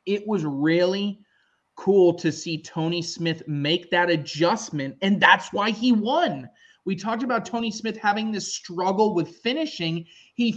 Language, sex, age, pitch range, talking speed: English, male, 20-39, 165-215 Hz, 155 wpm